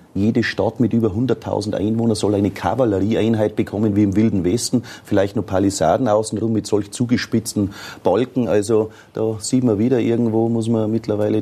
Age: 30-49